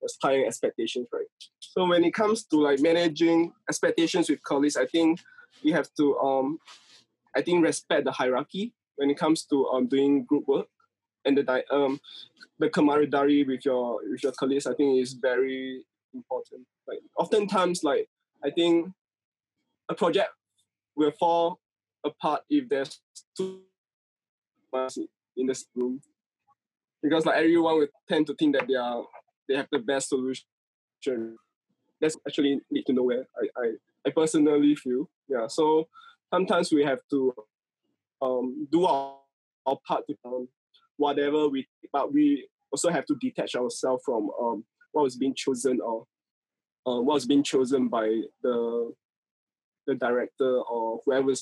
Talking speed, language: 150 wpm, English